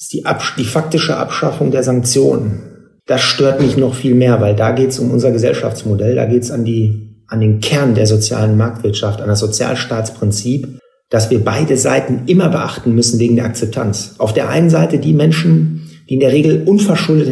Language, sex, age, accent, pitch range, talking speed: German, male, 40-59, German, 115-150 Hz, 180 wpm